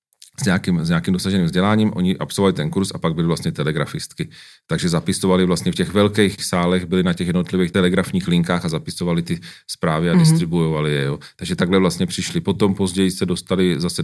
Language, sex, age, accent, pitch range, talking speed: Czech, male, 40-59, native, 90-105 Hz, 190 wpm